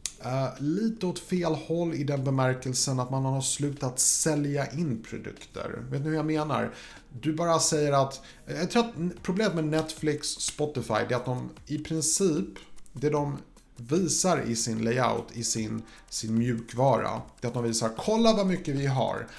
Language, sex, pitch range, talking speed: Swedish, male, 115-155 Hz, 180 wpm